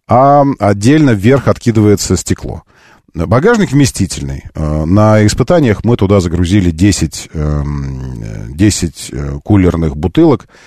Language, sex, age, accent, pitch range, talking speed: Russian, male, 40-59, native, 95-130 Hz, 90 wpm